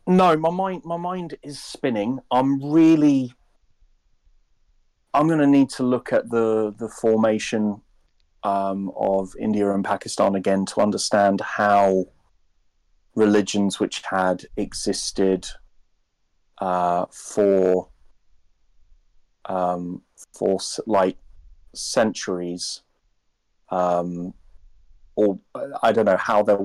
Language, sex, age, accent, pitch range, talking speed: English, male, 30-49, British, 85-105 Hz, 100 wpm